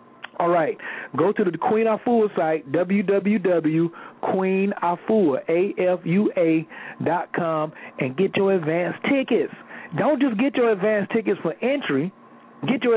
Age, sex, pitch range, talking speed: 40-59, male, 175-245 Hz, 110 wpm